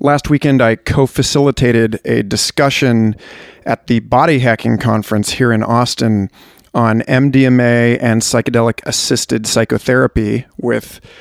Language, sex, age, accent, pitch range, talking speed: English, male, 40-59, American, 115-145 Hz, 105 wpm